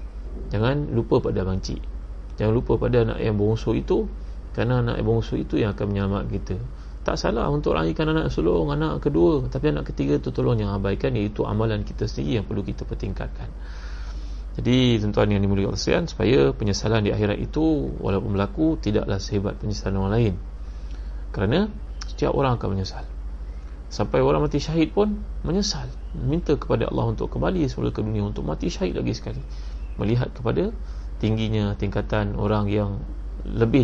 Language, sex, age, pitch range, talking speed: Malay, male, 30-49, 95-110 Hz, 160 wpm